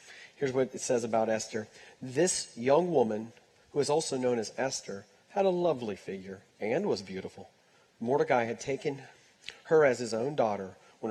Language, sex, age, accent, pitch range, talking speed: English, male, 40-59, American, 115-160 Hz, 165 wpm